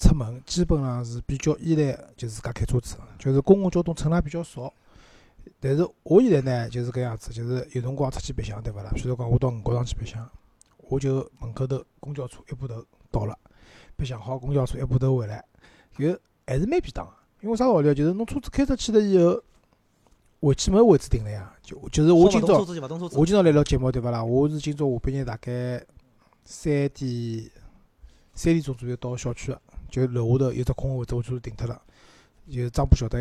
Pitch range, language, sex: 120-145 Hz, Chinese, male